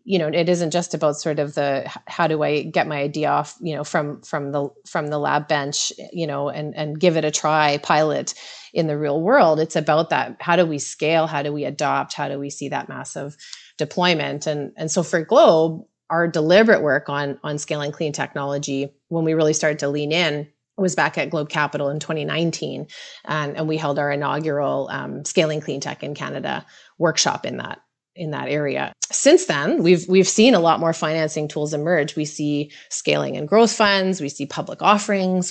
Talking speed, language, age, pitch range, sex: 205 wpm, English, 30-49, 145-175 Hz, female